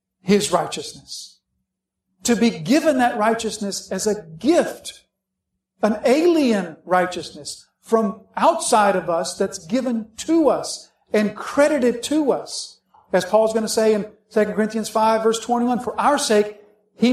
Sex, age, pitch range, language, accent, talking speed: male, 50-69, 175-230 Hz, English, American, 140 wpm